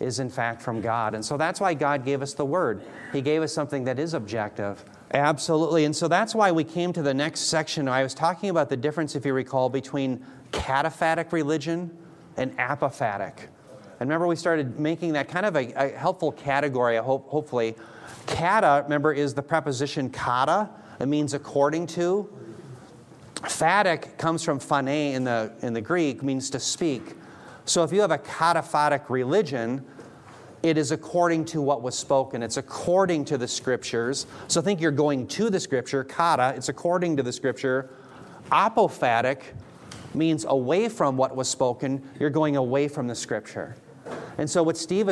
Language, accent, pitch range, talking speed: English, American, 130-165 Hz, 175 wpm